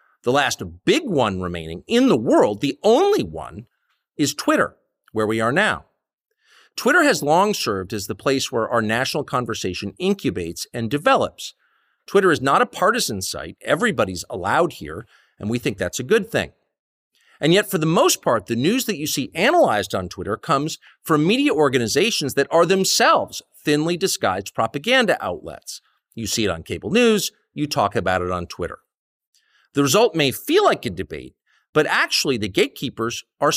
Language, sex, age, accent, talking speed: English, male, 50-69, American, 170 wpm